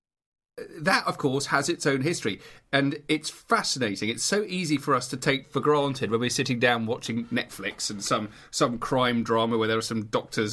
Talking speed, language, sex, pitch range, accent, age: 200 wpm, English, male, 125-180 Hz, British, 40-59